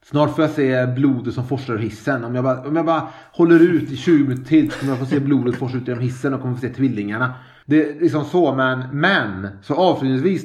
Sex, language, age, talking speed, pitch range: male, Swedish, 30-49, 255 wpm, 120-150 Hz